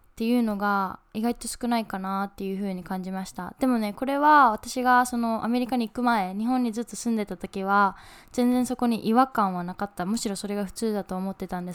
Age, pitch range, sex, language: 10-29, 185-230 Hz, female, Japanese